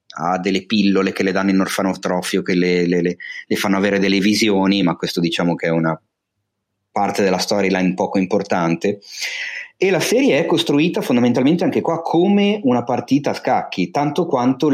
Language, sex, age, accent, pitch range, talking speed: Italian, male, 30-49, native, 105-155 Hz, 165 wpm